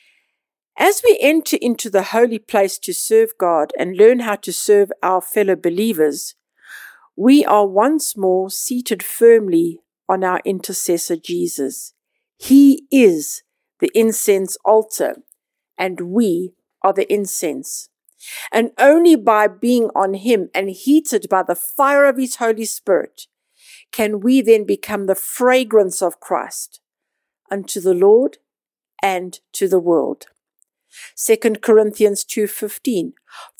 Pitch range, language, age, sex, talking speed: 195-270 Hz, English, 50-69, female, 125 wpm